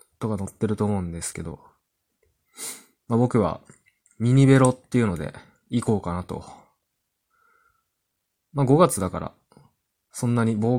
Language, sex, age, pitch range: Japanese, male, 20-39, 90-130 Hz